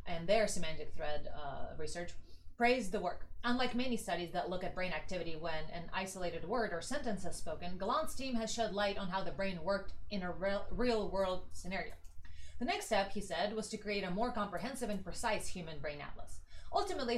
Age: 30-49